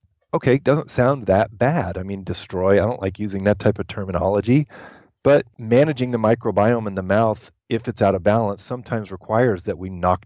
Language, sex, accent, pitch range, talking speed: English, male, American, 90-110 Hz, 195 wpm